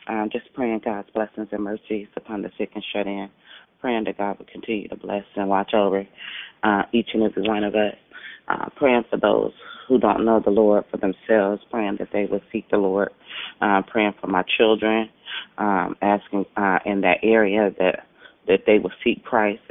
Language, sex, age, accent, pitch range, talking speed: English, female, 30-49, American, 95-110 Hz, 190 wpm